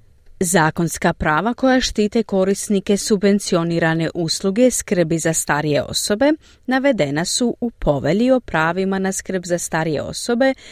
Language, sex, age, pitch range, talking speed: Croatian, female, 30-49, 155-215 Hz, 125 wpm